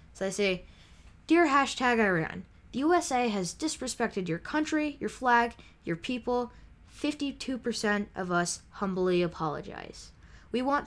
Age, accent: 10-29, American